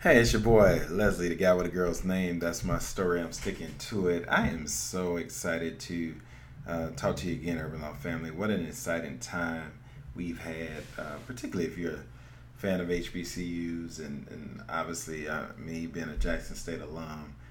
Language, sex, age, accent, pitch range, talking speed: English, male, 40-59, American, 80-135 Hz, 190 wpm